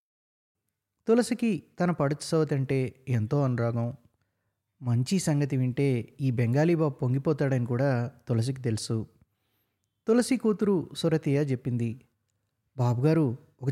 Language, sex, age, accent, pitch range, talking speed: Telugu, male, 20-39, native, 125-165 Hz, 95 wpm